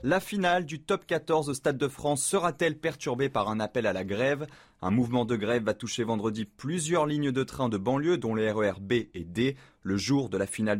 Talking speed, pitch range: 230 wpm, 100-140 Hz